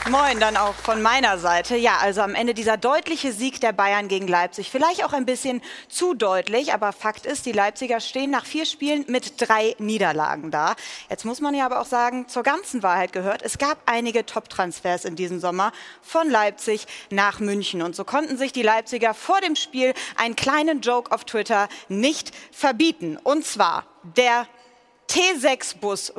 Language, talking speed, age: German, 180 wpm, 30-49